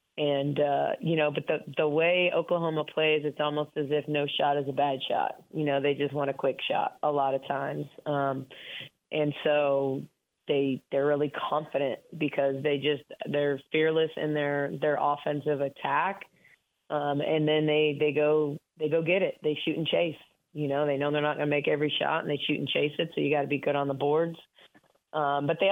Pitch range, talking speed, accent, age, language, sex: 140-155 Hz, 215 wpm, American, 20-39, English, female